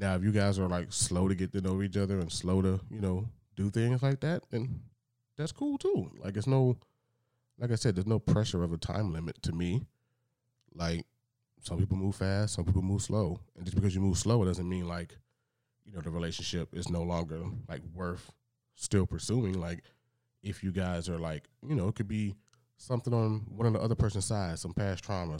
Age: 20-39